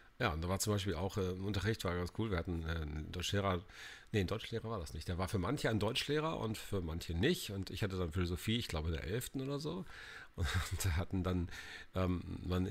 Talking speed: 235 wpm